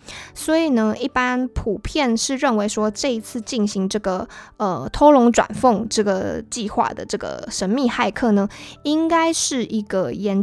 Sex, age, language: female, 20-39, Chinese